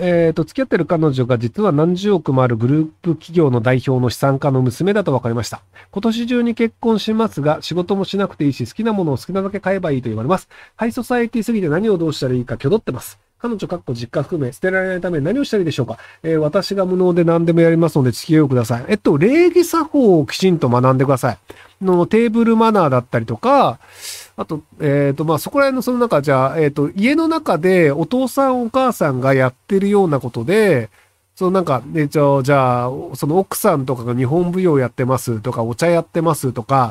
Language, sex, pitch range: Japanese, male, 130-215 Hz